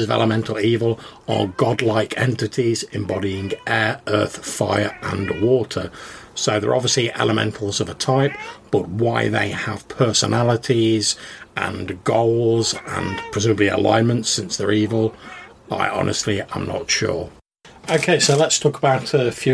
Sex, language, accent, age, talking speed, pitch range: male, English, British, 40-59, 135 wpm, 110-125 Hz